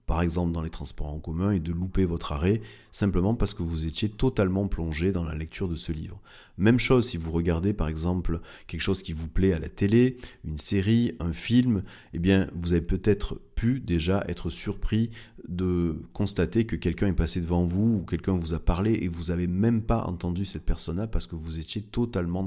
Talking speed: 210 wpm